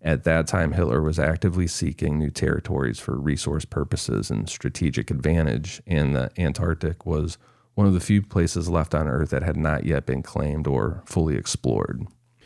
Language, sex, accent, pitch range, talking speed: English, male, American, 75-100 Hz, 175 wpm